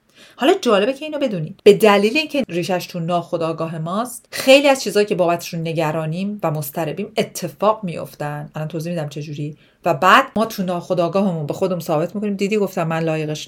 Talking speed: 185 wpm